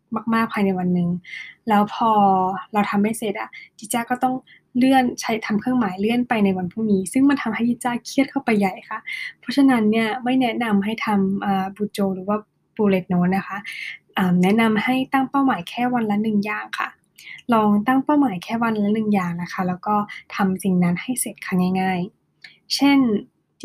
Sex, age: female, 10-29